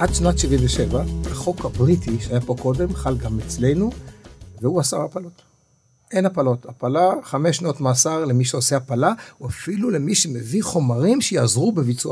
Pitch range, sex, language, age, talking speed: 120-155 Hz, male, Hebrew, 60-79, 150 wpm